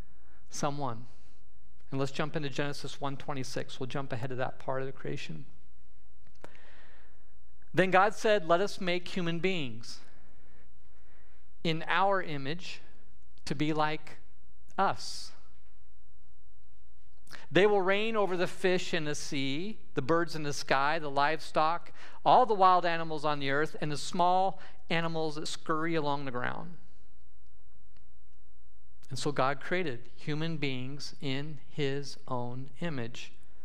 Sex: male